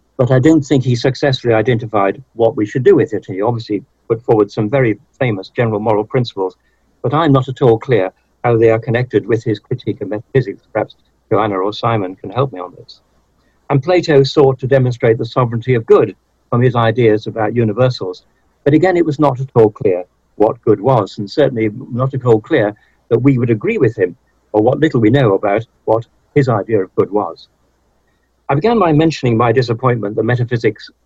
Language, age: English, 60-79